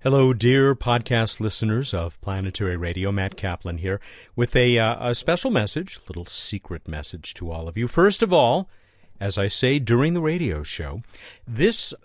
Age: 50-69